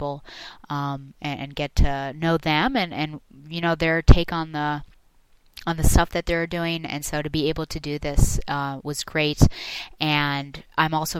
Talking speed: 180 wpm